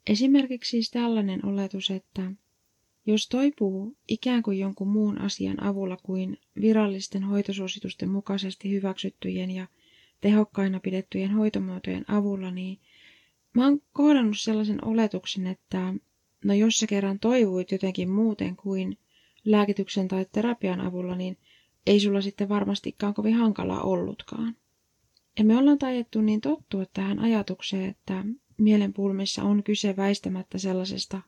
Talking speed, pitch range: 125 wpm, 190-220 Hz